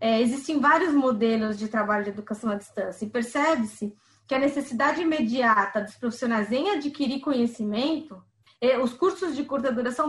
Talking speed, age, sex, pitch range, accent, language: 150 wpm, 20-39, female, 220-280 Hz, Brazilian, Portuguese